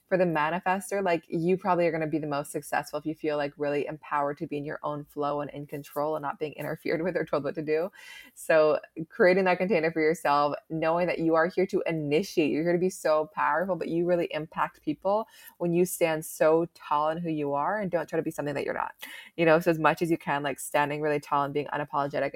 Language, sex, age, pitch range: English, female, 20-39, 145-175 Hz